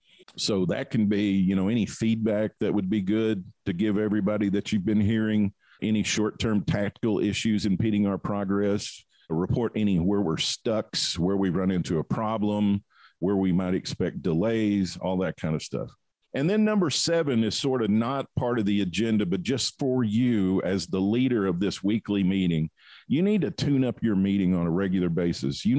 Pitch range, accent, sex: 100-135 Hz, American, male